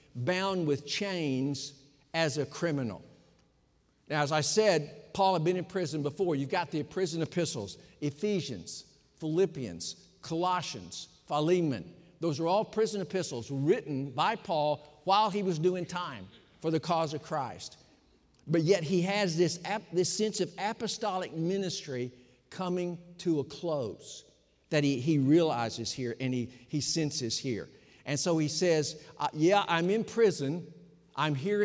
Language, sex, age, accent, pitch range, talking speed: English, male, 50-69, American, 135-180 Hz, 150 wpm